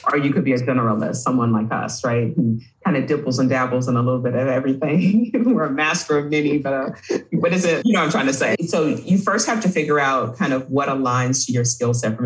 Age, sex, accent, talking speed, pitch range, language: 40-59, female, American, 270 wpm, 120-150 Hz, English